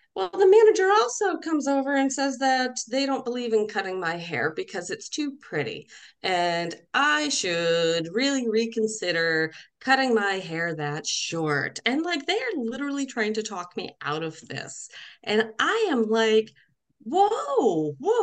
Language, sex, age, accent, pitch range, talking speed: English, female, 30-49, American, 200-295 Hz, 155 wpm